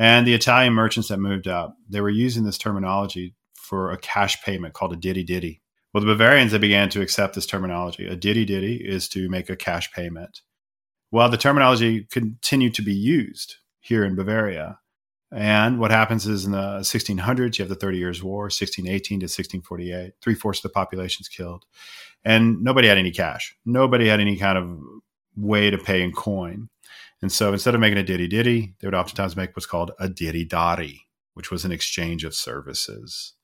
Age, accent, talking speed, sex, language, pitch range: 40-59, American, 190 wpm, male, English, 95-120 Hz